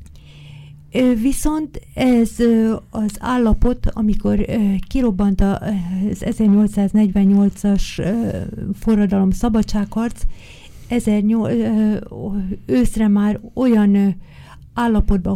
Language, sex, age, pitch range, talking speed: Hungarian, female, 50-69, 195-225 Hz, 60 wpm